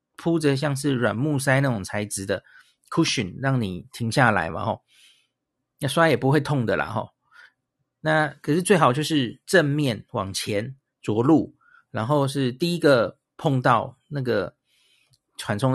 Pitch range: 120-150 Hz